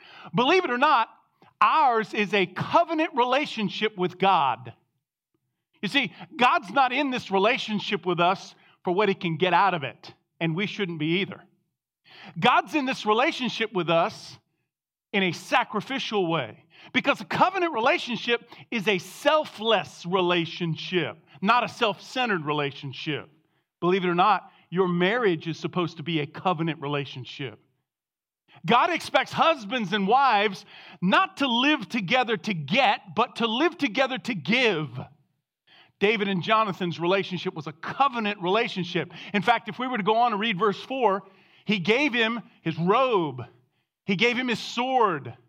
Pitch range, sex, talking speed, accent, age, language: 175-235 Hz, male, 150 wpm, American, 40-59, English